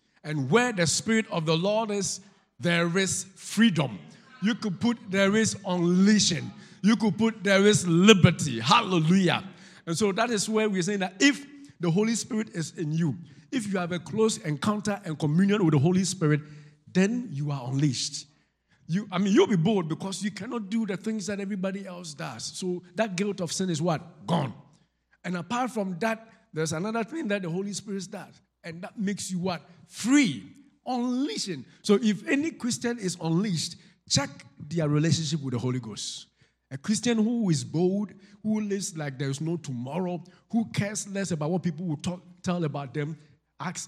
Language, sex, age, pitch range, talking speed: English, male, 50-69, 155-205 Hz, 185 wpm